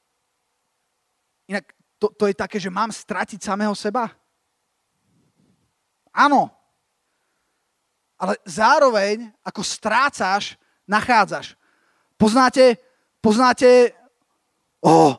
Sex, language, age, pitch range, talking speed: male, Slovak, 30-49, 210-255 Hz, 75 wpm